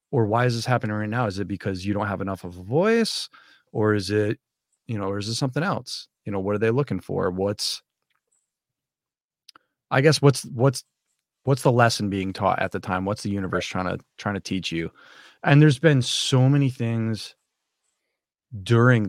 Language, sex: English, male